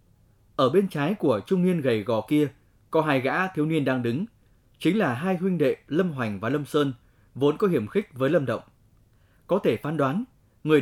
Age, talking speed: 20-39, 210 wpm